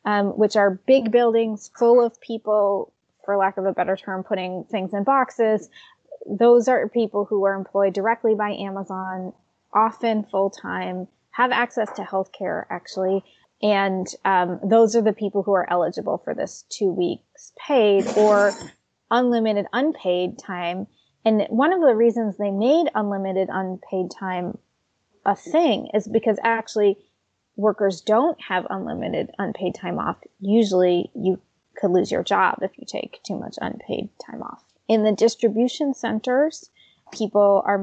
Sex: female